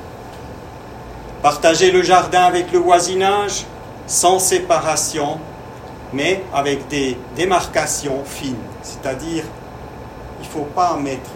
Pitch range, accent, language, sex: 130-160 Hz, French, French, male